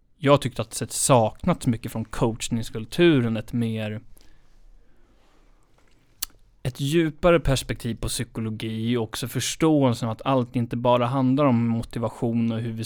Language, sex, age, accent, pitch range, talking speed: Swedish, male, 30-49, native, 110-125 Hz, 135 wpm